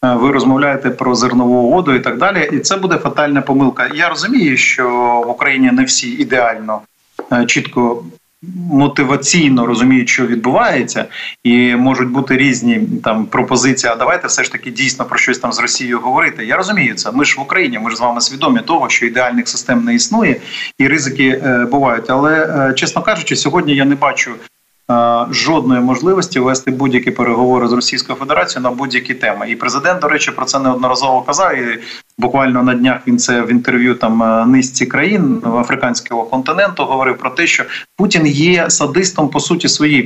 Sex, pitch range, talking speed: male, 125-160 Hz, 175 wpm